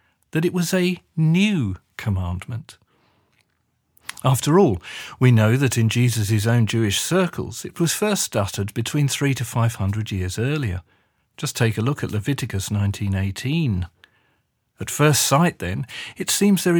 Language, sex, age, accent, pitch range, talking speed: English, male, 40-59, British, 100-145 Hz, 145 wpm